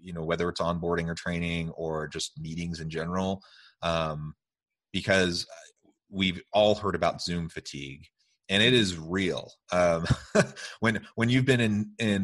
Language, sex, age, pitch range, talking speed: English, male, 30-49, 80-100 Hz, 150 wpm